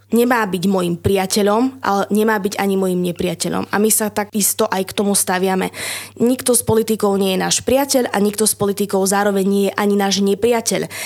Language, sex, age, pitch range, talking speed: Slovak, female, 20-39, 195-225 Hz, 190 wpm